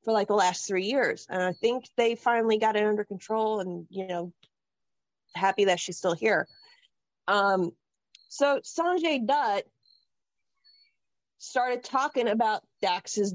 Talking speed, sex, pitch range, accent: 140 wpm, female, 200-285 Hz, American